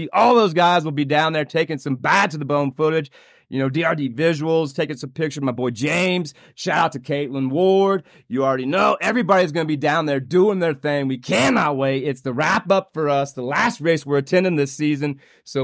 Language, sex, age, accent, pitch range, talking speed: English, male, 30-49, American, 140-170 Hz, 205 wpm